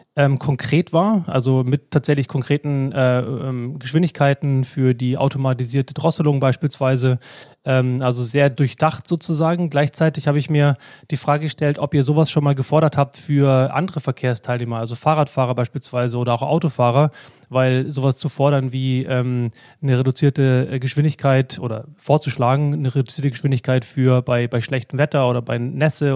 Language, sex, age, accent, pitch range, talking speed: German, male, 30-49, German, 130-145 Hz, 150 wpm